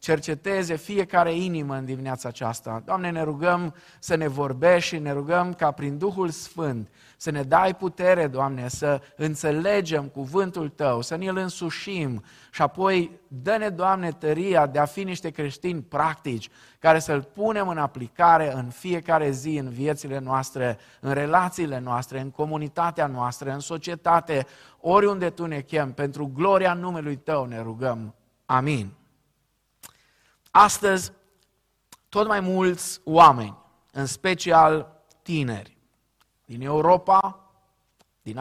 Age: 20-39